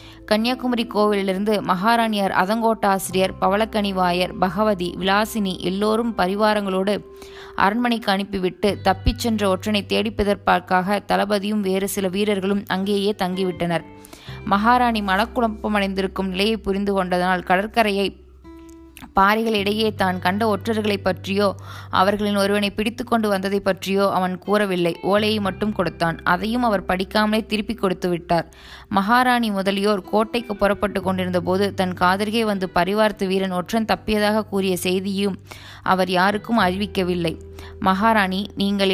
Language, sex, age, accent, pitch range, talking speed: Tamil, female, 20-39, native, 185-215 Hz, 105 wpm